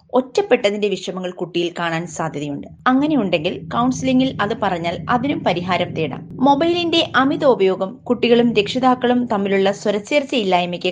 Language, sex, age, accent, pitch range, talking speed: Malayalam, female, 20-39, native, 170-235 Hz, 105 wpm